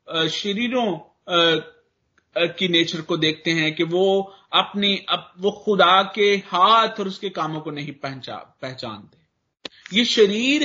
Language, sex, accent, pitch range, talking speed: Hindi, male, native, 160-200 Hz, 125 wpm